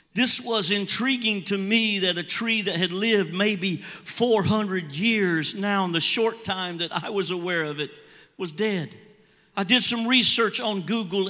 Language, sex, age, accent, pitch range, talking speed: English, male, 50-69, American, 180-225 Hz, 175 wpm